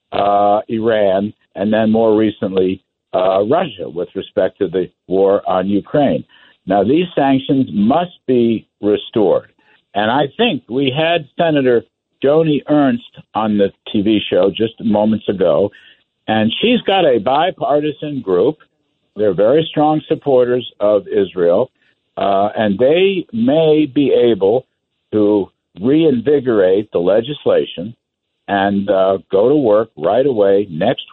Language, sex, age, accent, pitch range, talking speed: English, male, 60-79, American, 105-165 Hz, 125 wpm